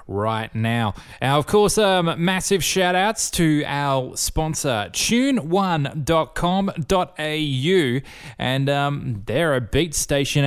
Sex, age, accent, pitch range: male, 20-39, Australian, 120-170 Hz